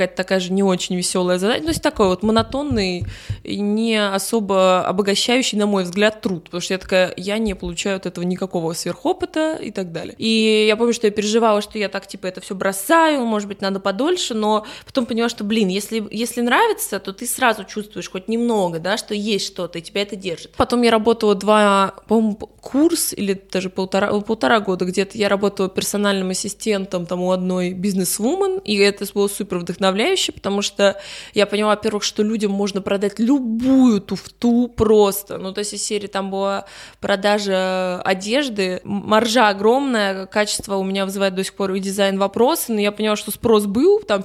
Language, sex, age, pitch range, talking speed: Russian, female, 20-39, 195-225 Hz, 185 wpm